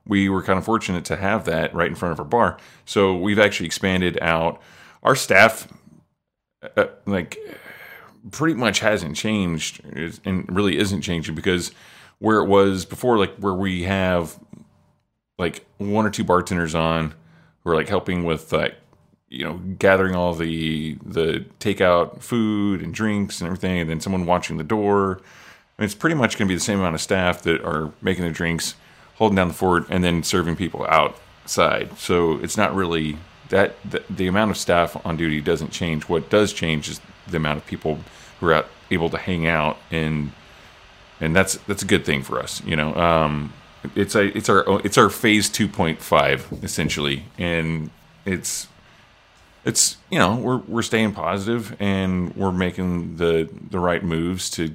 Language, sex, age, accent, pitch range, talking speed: English, male, 30-49, American, 80-100 Hz, 180 wpm